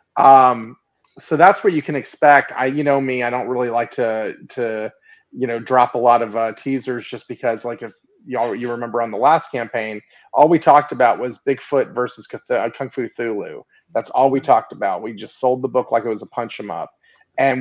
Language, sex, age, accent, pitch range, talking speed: English, male, 30-49, American, 120-145 Hz, 220 wpm